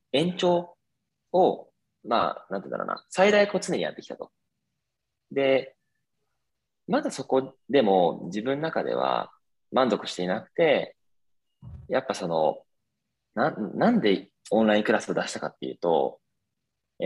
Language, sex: Japanese, male